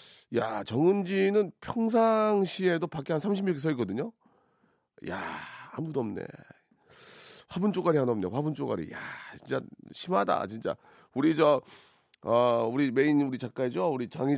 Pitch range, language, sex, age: 110-155 Hz, Korean, male, 40-59